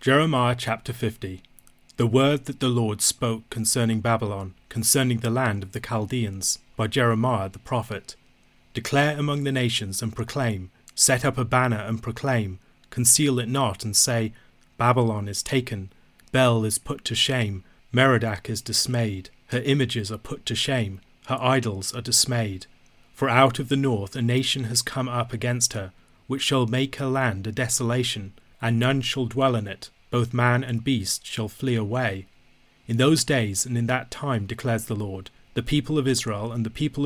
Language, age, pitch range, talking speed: English, 30-49, 110-130 Hz, 175 wpm